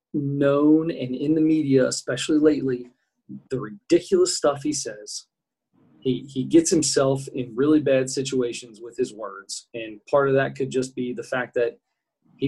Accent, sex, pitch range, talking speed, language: American, male, 125-155 Hz, 165 wpm, English